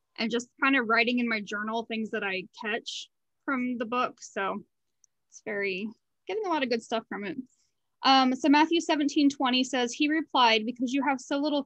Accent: American